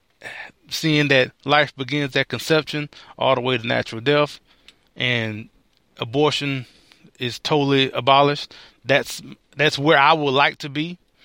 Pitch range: 115-150 Hz